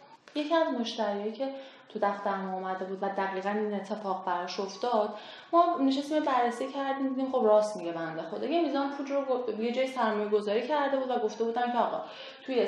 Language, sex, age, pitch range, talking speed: Persian, female, 10-29, 210-295 Hz, 185 wpm